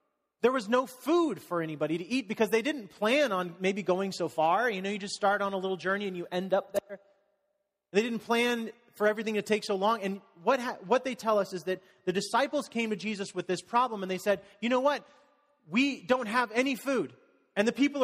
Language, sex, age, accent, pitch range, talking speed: English, male, 30-49, American, 165-235 Hz, 235 wpm